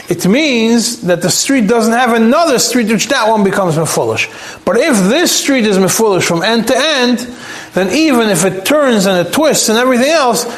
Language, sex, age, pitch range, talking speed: English, male, 30-49, 185-235 Hz, 210 wpm